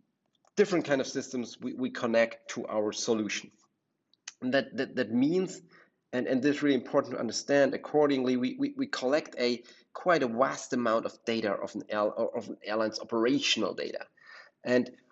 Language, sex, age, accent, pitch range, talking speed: English, male, 30-49, German, 120-150 Hz, 180 wpm